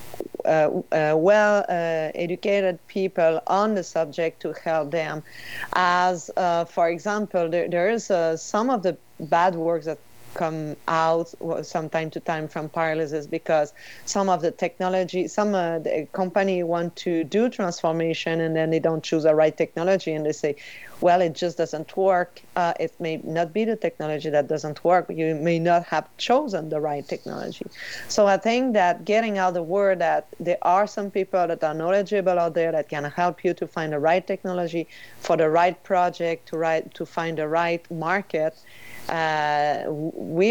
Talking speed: 180 wpm